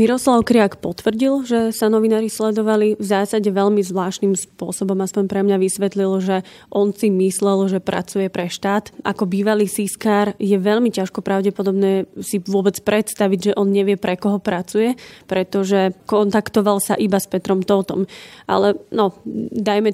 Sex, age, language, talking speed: female, 20-39, Slovak, 150 wpm